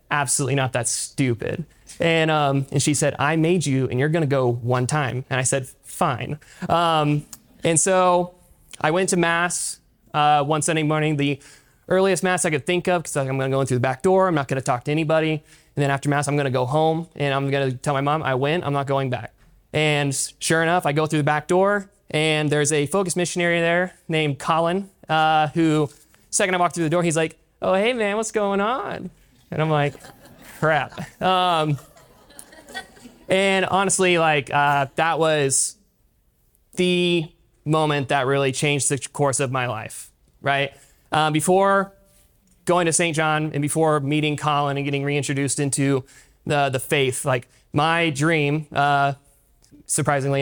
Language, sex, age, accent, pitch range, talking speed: English, male, 20-39, American, 140-170 Hz, 185 wpm